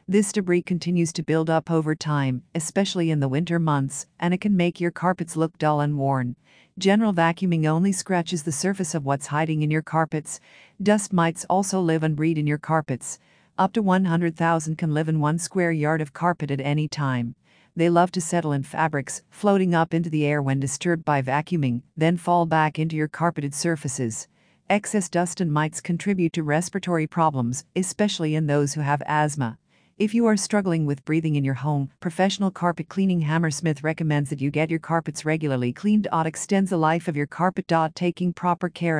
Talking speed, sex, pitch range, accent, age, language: 190 wpm, female, 150-175 Hz, American, 50-69, English